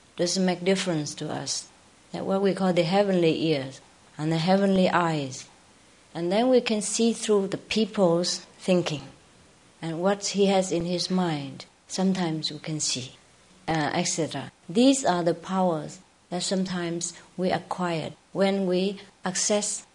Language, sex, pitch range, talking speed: English, female, 170-200 Hz, 145 wpm